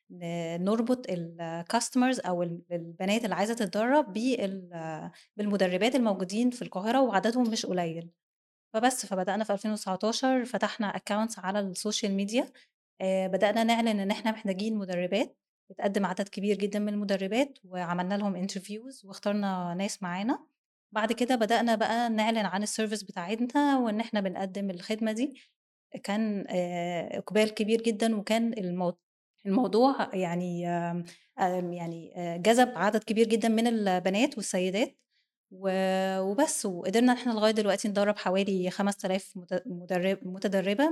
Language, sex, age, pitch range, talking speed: Arabic, female, 20-39, 185-225 Hz, 120 wpm